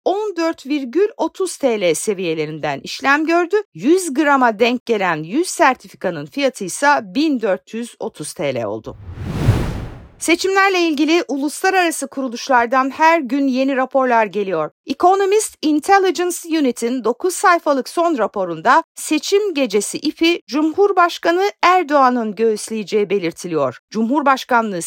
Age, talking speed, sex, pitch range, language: 50-69, 95 wpm, female, 235-330 Hz, Turkish